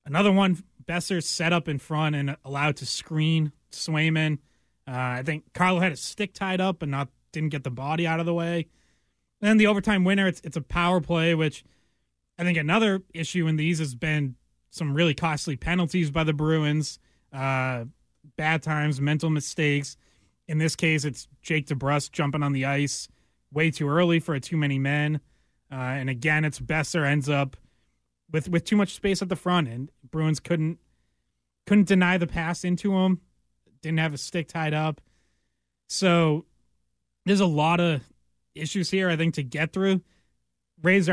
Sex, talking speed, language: male, 180 wpm, English